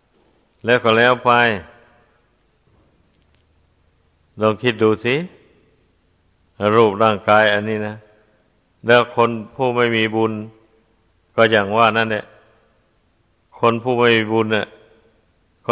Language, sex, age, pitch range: Thai, male, 60-79, 110-120 Hz